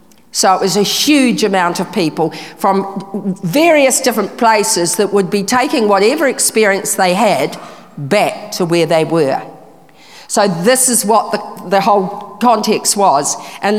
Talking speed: 150 wpm